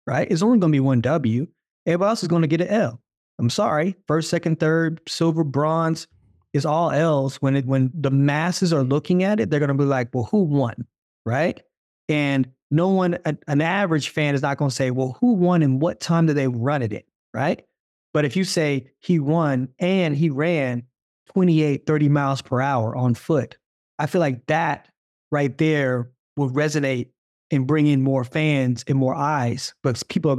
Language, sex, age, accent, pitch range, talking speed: English, male, 20-39, American, 135-175 Hz, 205 wpm